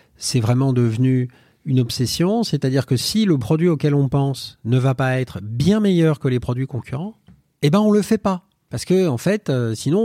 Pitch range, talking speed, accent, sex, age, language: 115-150 Hz, 210 wpm, French, male, 40-59, French